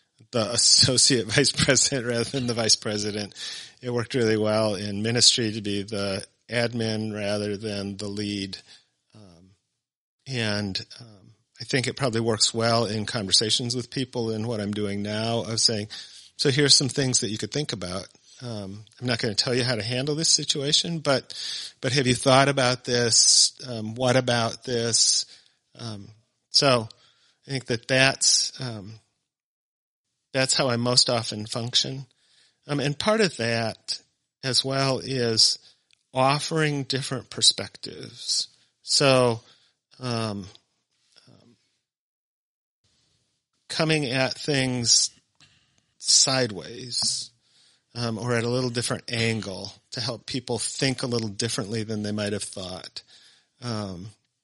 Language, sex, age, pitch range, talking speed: English, male, 40-59, 110-130 Hz, 140 wpm